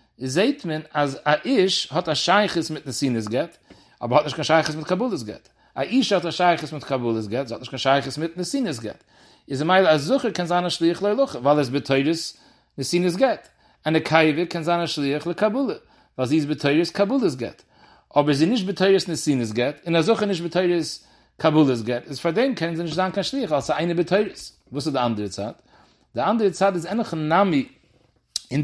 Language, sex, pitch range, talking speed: English, male, 140-185 Hz, 115 wpm